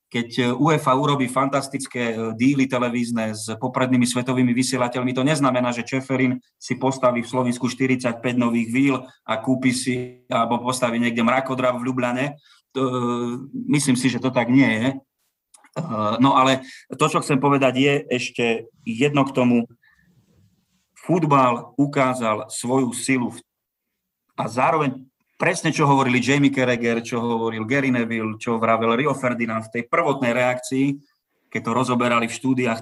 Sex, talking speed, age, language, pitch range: male, 145 wpm, 30-49, Slovak, 115-130 Hz